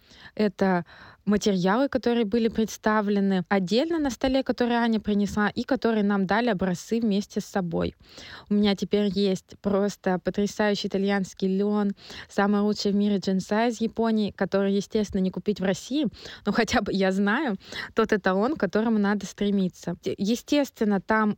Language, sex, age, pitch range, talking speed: Russian, female, 20-39, 195-220 Hz, 150 wpm